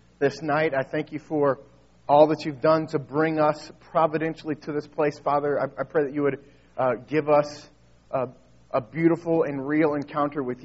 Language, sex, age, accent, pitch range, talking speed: English, male, 40-59, American, 120-150 Hz, 190 wpm